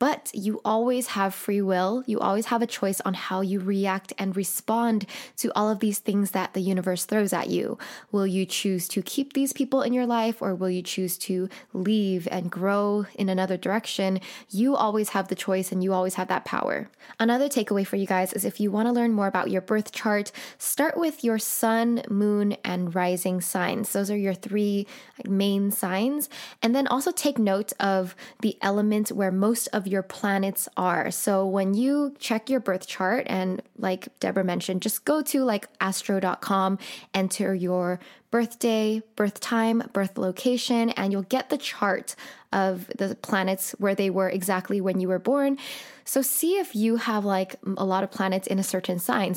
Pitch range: 190-230 Hz